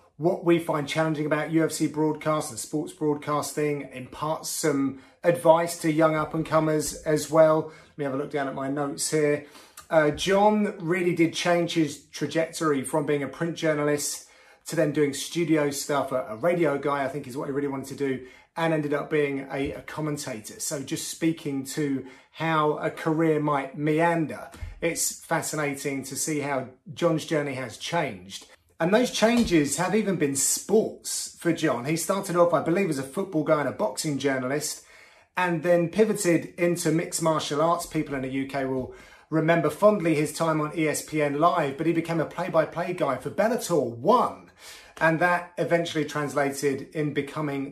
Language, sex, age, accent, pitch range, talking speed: English, male, 30-49, British, 140-165 Hz, 175 wpm